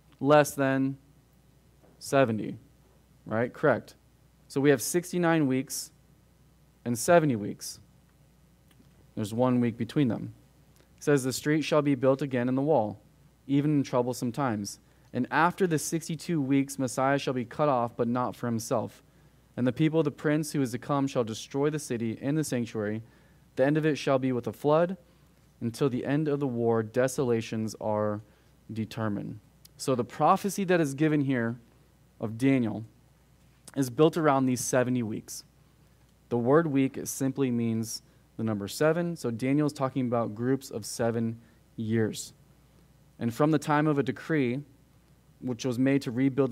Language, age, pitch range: English, 20-39, 120-145 Hz